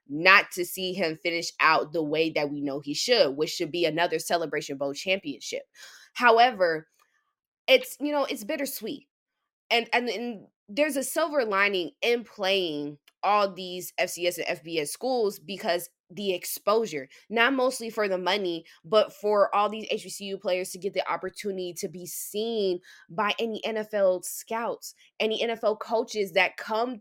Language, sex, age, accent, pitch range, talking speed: English, female, 20-39, American, 180-235 Hz, 160 wpm